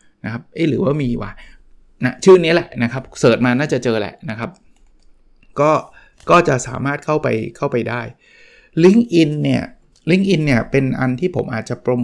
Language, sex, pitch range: Thai, male, 120-150 Hz